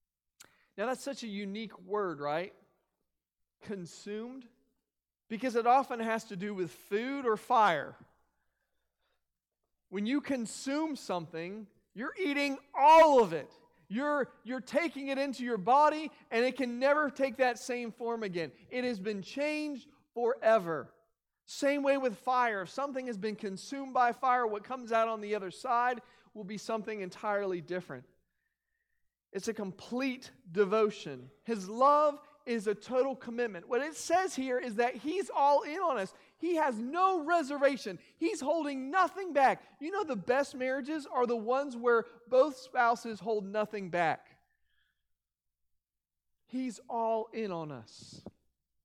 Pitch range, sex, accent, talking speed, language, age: 190-270 Hz, male, American, 145 wpm, English, 40-59